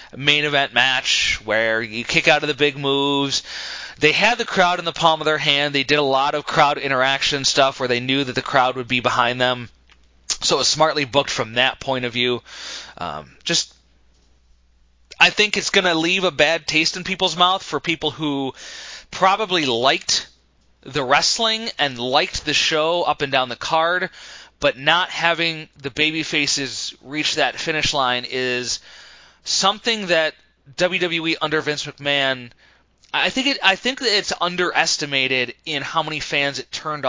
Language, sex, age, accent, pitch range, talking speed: English, male, 30-49, American, 125-160 Hz, 175 wpm